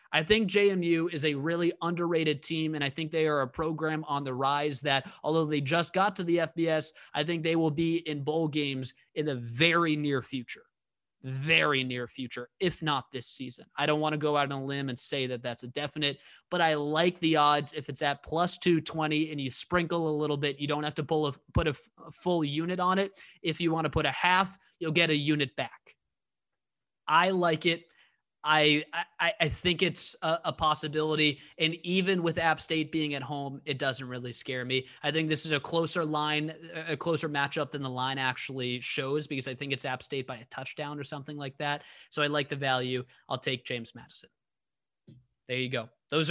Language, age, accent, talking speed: English, 20-39, American, 215 wpm